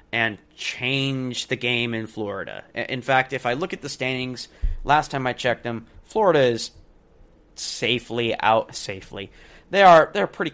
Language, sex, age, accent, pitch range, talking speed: English, male, 20-39, American, 110-125 Hz, 160 wpm